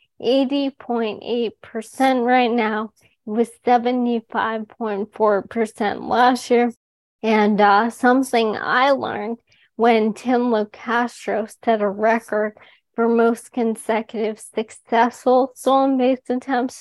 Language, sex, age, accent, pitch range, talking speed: English, female, 20-39, American, 220-245 Hz, 80 wpm